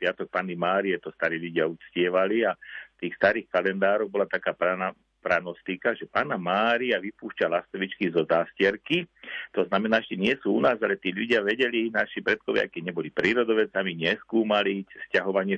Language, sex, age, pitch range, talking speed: Slovak, male, 50-69, 95-115 Hz, 155 wpm